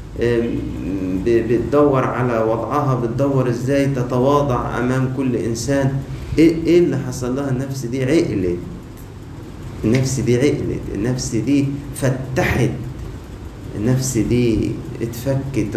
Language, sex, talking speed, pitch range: Arabic, male, 100 wpm, 105-130 Hz